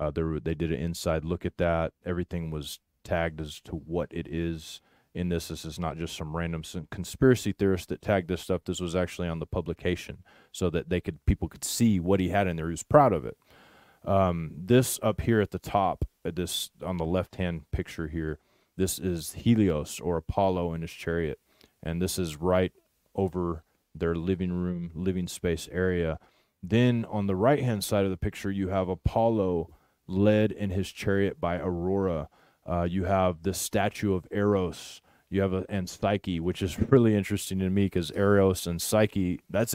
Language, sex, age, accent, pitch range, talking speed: English, male, 30-49, American, 85-100 Hz, 195 wpm